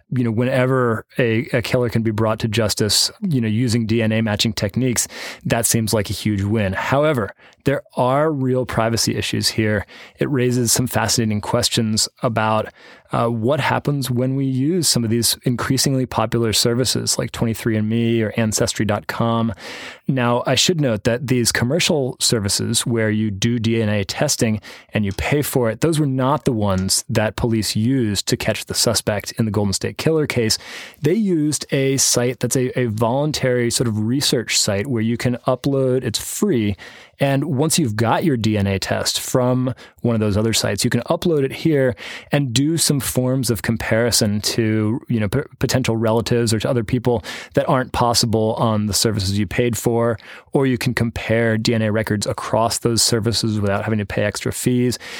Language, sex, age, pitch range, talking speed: English, male, 20-39, 110-130 Hz, 175 wpm